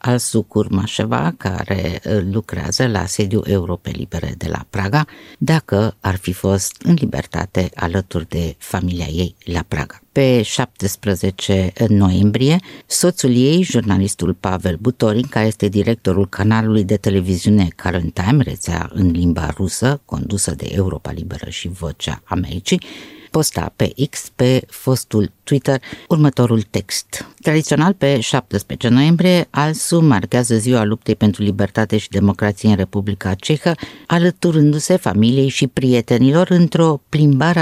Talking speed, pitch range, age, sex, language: 125 wpm, 100-135 Hz, 50-69, female, Romanian